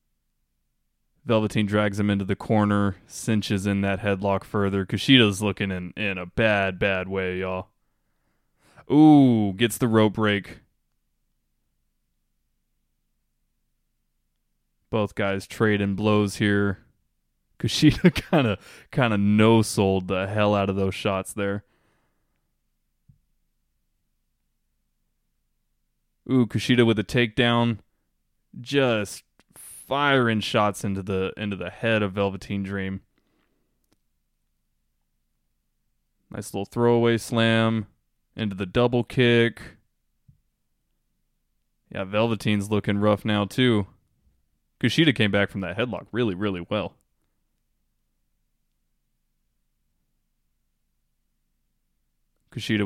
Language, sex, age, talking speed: English, male, 20-39, 95 wpm